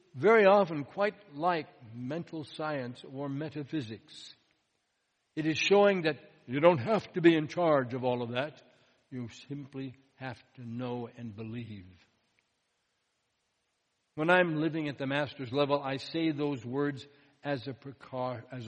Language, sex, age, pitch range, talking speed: English, male, 60-79, 135-185 Hz, 140 wpm